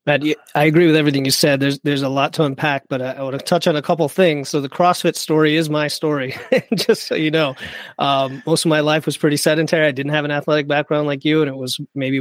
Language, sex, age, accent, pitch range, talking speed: English, male, 30-49, American, 140-165 Hz, 265 wpm